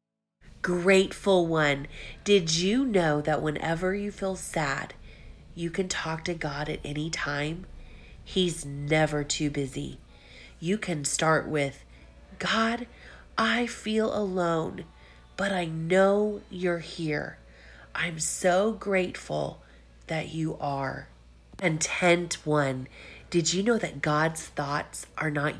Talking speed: 120 wpm